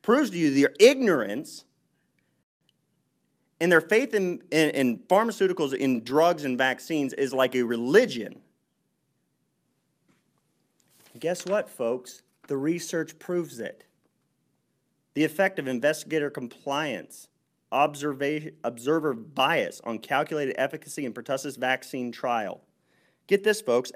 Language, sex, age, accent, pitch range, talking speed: English, male, 40-59, American, 145-205 Hz, 115 wpm